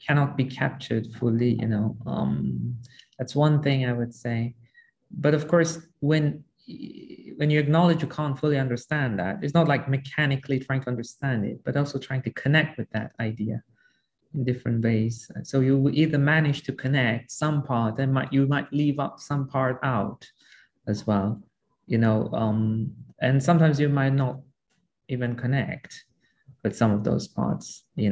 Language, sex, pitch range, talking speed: English, male, 125-150 Hz, 170 wpm